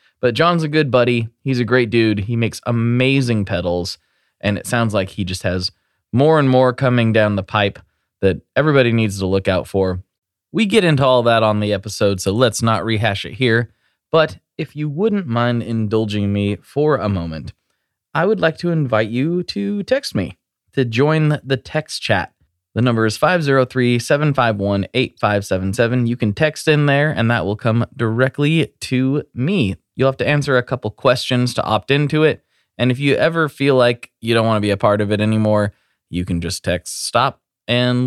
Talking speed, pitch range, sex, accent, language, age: 190 wpm, 100-135 Hz, male, American, English, 20-39